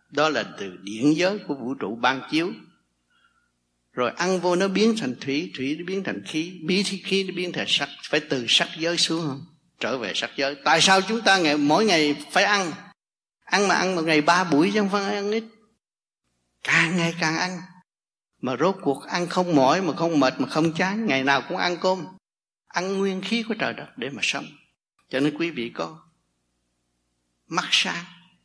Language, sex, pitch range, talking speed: Vietnamese, male, 115-190 Hz, 200 wpm